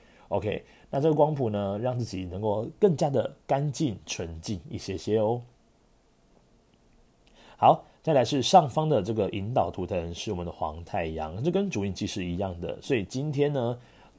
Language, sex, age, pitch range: Chinese, male, 30-49, 95-135 Hz